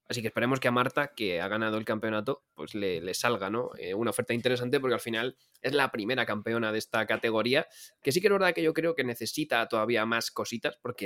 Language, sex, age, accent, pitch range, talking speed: Spanish, male, 20-39, Spanish, 105-125 Hz, 240 wpm